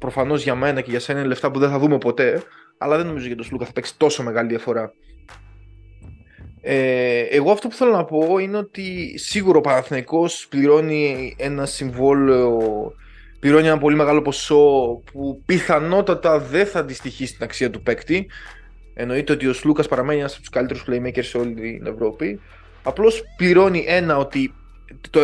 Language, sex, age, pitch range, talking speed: Greek, male, 20-39, 125-150 Hz, 170 wpm